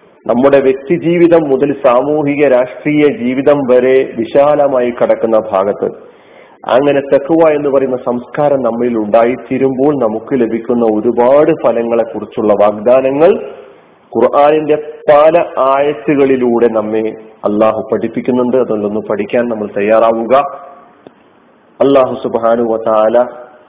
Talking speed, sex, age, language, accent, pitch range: 90 wpm, male, 40-59, Malayalam, native, 105-140 Hz